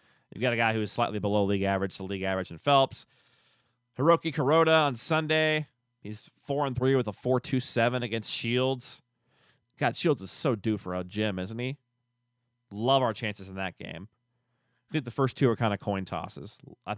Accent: American